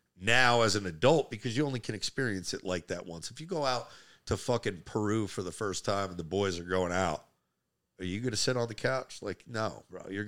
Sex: male